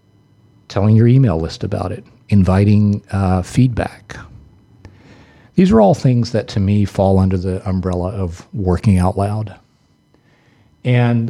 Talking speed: 135 wpm